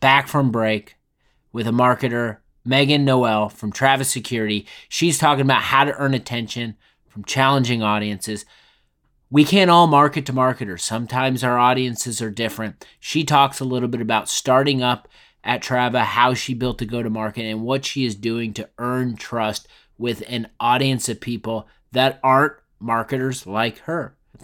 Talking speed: 165 wpm